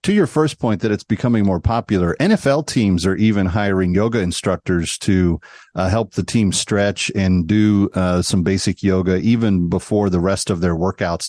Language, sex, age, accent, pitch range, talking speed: English, male, 40-59, American, 95-130 Hz, 185 wpm